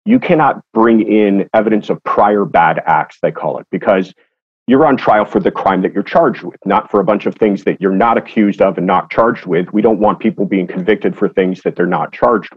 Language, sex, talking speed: English, male, 240 wpm